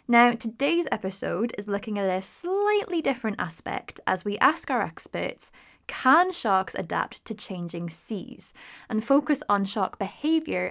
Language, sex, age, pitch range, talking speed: English, female, 20-39, 180-245 Hz, 145 wpm